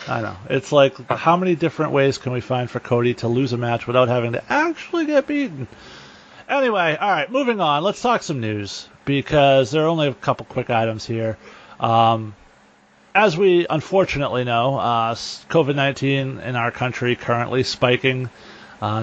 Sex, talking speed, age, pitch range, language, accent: male, 170 wpm, 30-49, 115-150 Hz, English, American